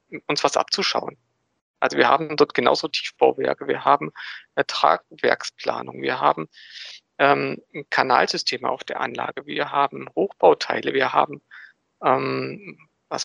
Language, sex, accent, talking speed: German, male, German, 120 wpm